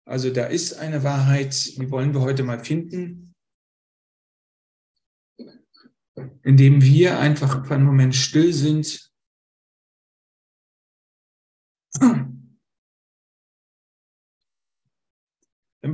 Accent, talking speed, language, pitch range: German, 75 wpm, German, 130-150 Hz